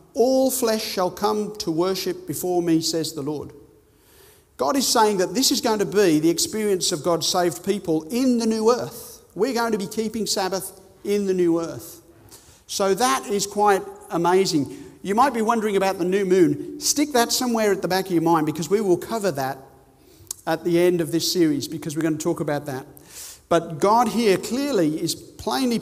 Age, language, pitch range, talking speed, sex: 50-69, English, 170-220 Hz, 200 wpm, male